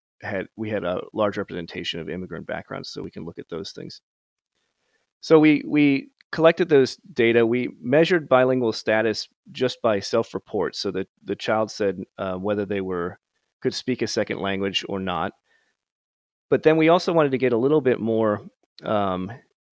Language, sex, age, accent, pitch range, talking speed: English, male, 30-49, American, 95-125 Hz, 175 wpm